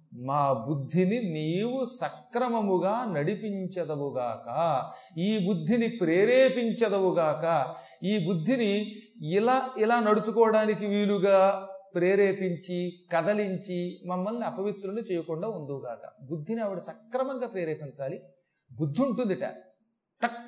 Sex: male